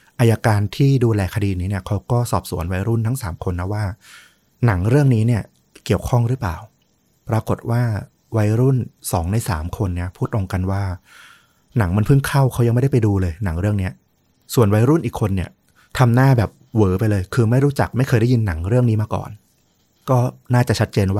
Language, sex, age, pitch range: Thai, male, 30-49, 95-120 Hz